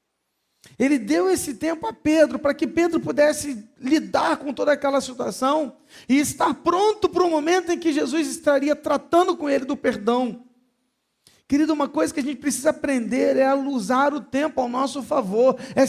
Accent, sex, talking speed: Brazilian, male, 175 wpm